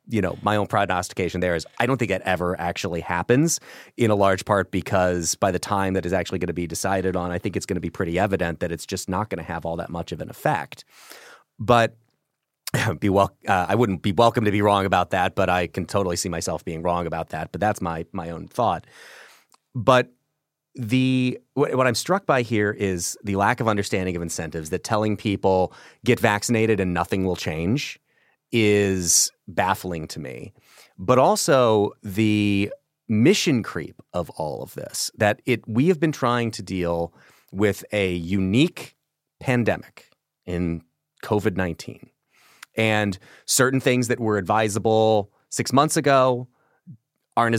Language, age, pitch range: English, 30-49, 90-120 Hz